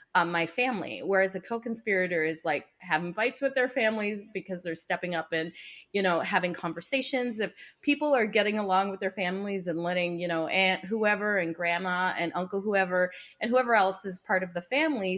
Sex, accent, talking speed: female, American, 190 wpm